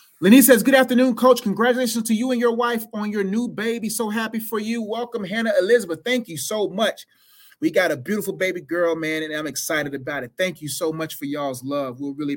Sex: male